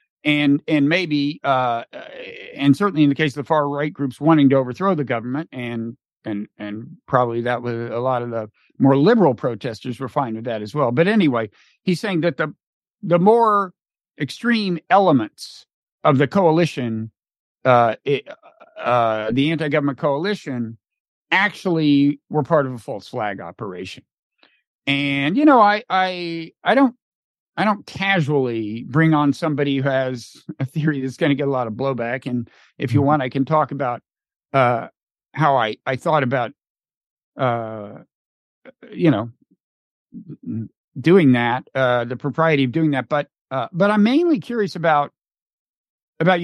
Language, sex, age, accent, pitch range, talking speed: English, male, 50-69, American, 130-170 Hz, 160 wpm